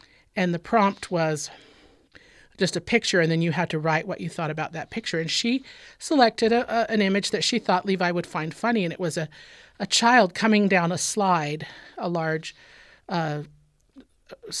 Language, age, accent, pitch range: English, 40-59, American, 155-195 Hz